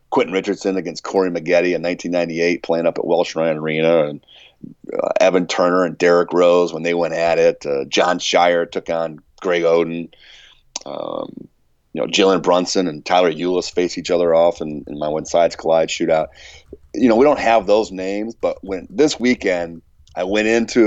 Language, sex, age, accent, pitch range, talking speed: English, male, 30-49, American, 85-105 Hz, 185 wpm